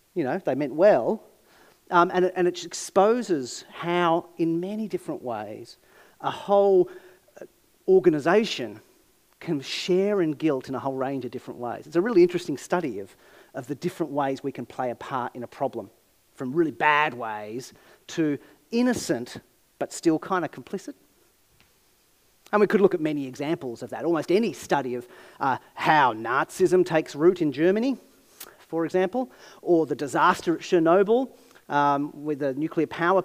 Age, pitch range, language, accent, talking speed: 40-59, 145-195 Hz, English, Australian, 160 wpm